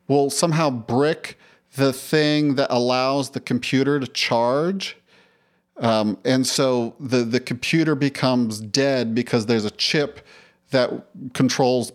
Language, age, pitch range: English, 40-59, 120-155 Hz